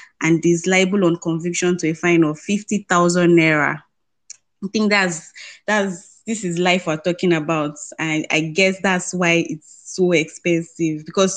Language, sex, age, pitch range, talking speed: English, female, 20-39, 165-185 Hz, 165 wpm